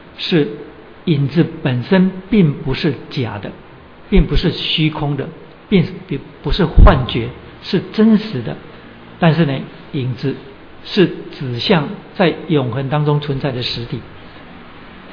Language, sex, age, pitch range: Chinese, male, 60-79, 130-160 Hz